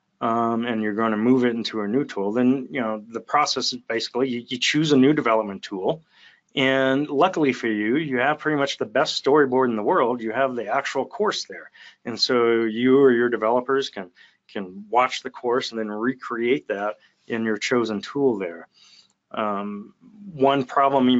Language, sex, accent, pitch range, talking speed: English, male, American, 110-135 Hz, 190 wpm